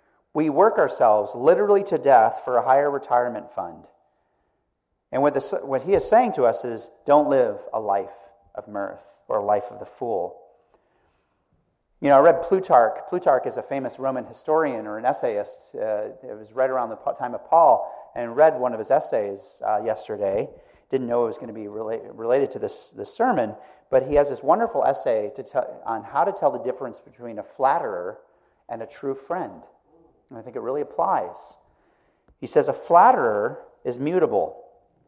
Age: 40-59